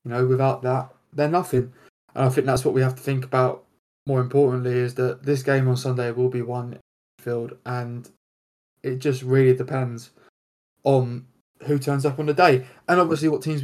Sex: male